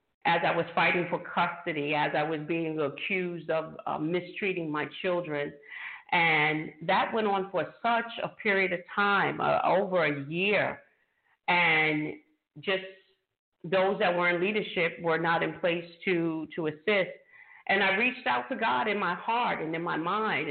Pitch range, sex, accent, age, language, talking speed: 160-200 Hz, female, American, 50-69, English, 165 wpm